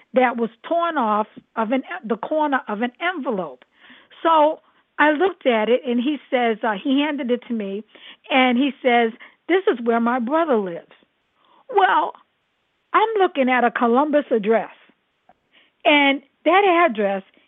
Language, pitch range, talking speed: English, 230-300 Hz, 150 wpm